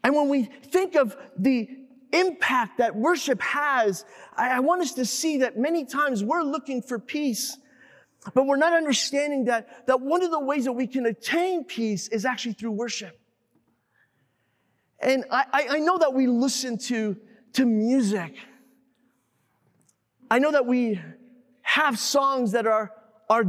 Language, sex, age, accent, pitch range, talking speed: English, male, 30-49, American, 215-270 Hz, 155 wpm